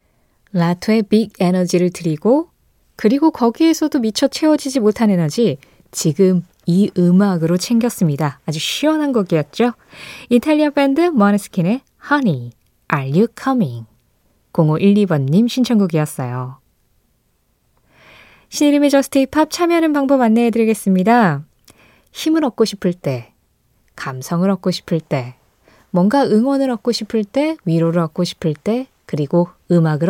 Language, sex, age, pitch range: Korean, female, 20-39, 165-235 Hz